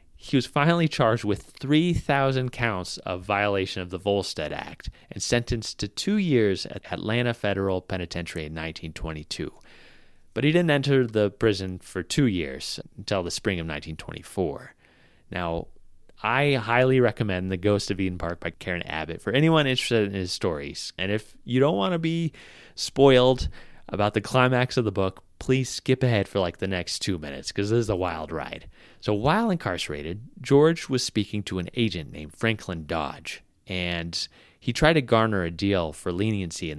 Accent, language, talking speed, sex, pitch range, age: American, English, 175 wpm, male, 85-125 Hz, 30-49